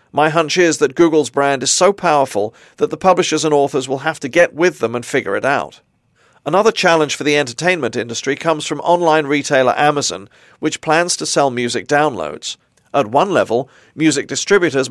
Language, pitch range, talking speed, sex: English, 135-160 Hz, 185 wpm, male